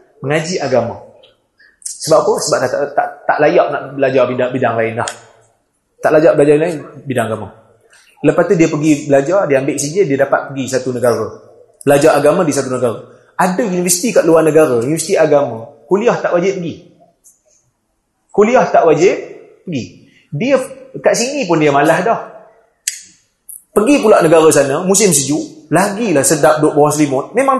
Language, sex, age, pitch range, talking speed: Malay, male, 30-49, 140-195 Hz, 160 wpm